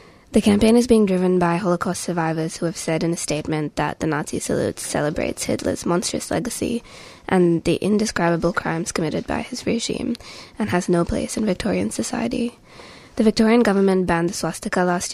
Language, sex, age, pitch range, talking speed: English, female, 20-39, 165-205 Hz, 175 wpm